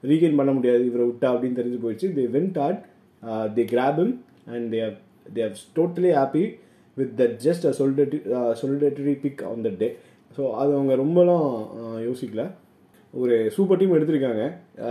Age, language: 20-39, Tamil